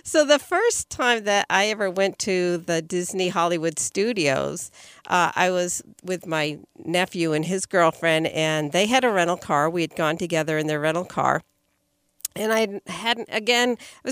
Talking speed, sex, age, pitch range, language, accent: 175 wpm, female, 50-69, 170-205 Hz, English, American